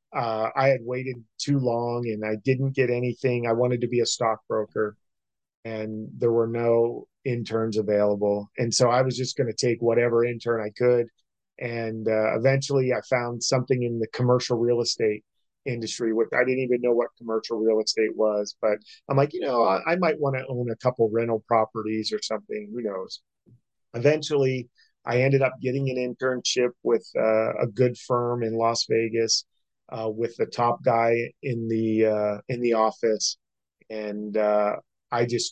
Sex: male